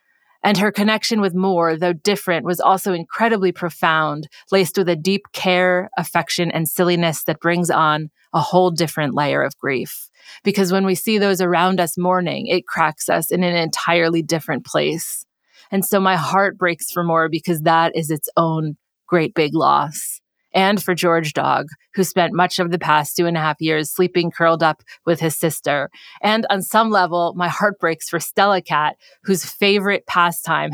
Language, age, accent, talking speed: English, 30-49, American, 180 wpm